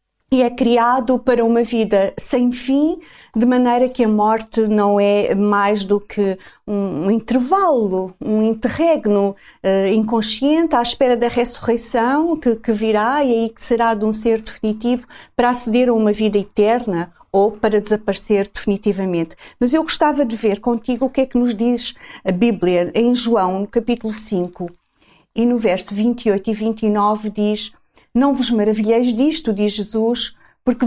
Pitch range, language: 210-250 Hz, Portuguese